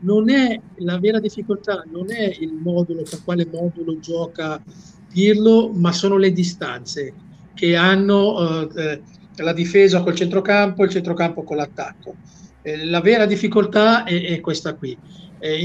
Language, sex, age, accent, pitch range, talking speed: Italian, male, 50-69, native, 170-210 Hz, 145 wpm